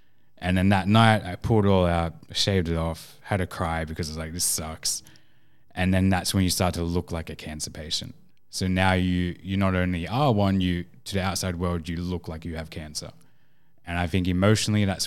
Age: 10-29